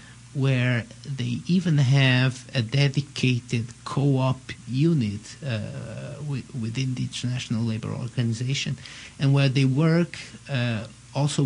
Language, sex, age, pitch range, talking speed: English, male, 50-69, 120-135 Hz, 110 wpm